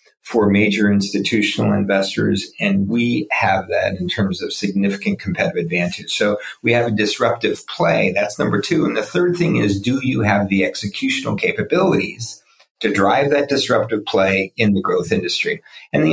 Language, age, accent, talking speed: English, 40-59, American, 165 wpm